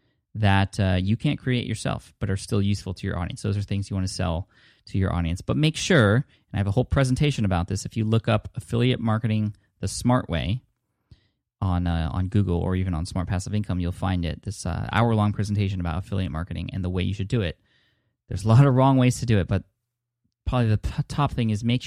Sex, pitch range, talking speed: male, 95-120 Hz, 235 wpm